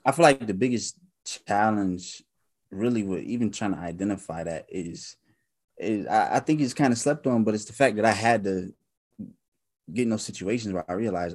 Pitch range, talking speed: 90-105 Hz, 200 wpm